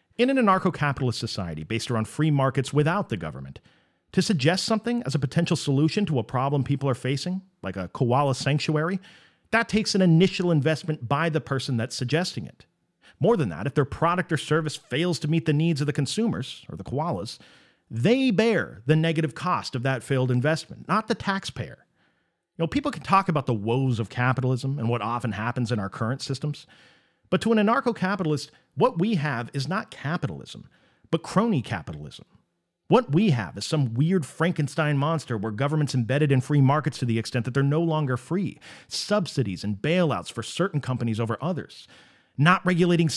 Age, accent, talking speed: 40-59, American, 185 wpm